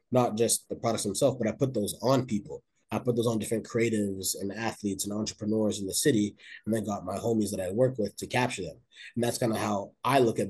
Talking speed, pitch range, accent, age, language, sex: 250 wpm, 105-120 Hz, American, 20-39, English, male